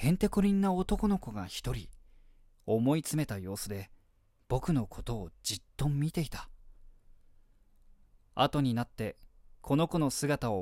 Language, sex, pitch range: Japanese, male, 100-145 Hz